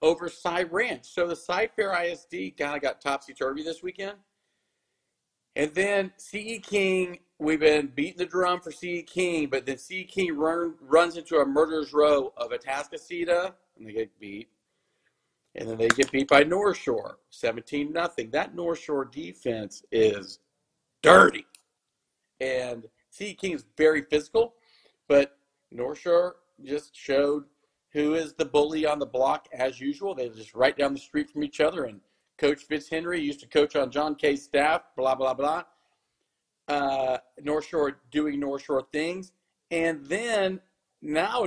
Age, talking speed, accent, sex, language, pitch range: 40-59, 155 wpm, American, male, English, 135-180 Hz